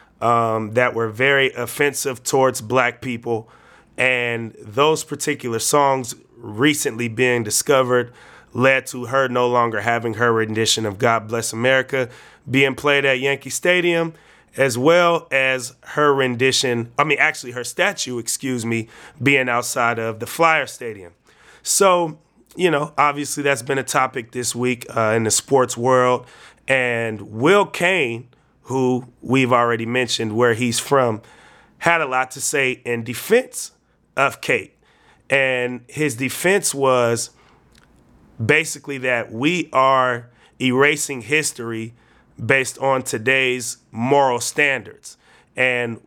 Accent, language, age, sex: American, English, 30-49, male